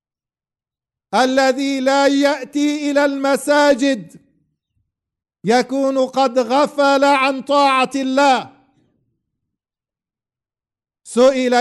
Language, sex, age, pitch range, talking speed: English, male, 50-69, 195-260 Hz, 60 wpm